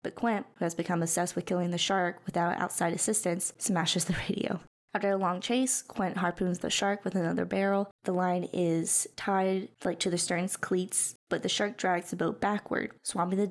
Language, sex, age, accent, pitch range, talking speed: English, female, 20-39, American, 180-220 Hz, 200 wpm